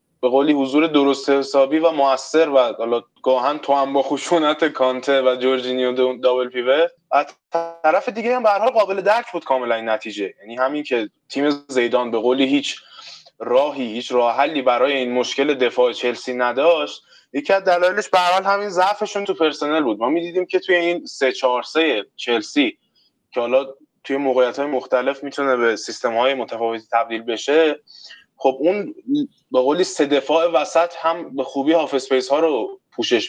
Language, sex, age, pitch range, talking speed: Persian, male, 20-39, 125-155 Hz, 170 wpm